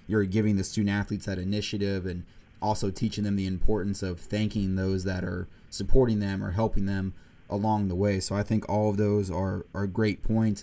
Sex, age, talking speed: male, 20-39, 200 wpm